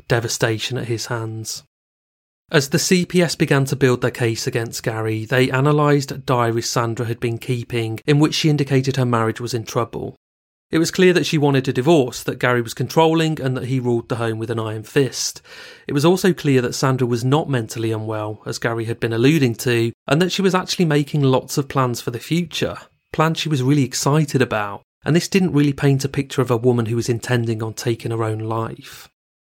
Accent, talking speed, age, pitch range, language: British, 215 wpm, 30-49, 120-145 Hz, English